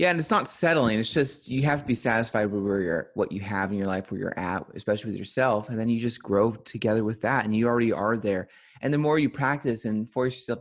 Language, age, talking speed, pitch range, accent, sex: English, 30-49, 270 wpm, 105-140 Hz, American, male